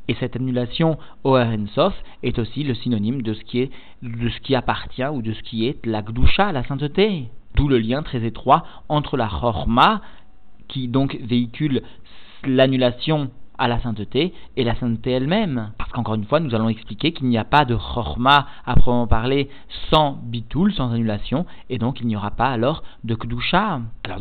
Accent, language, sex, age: French, French, male, 40-59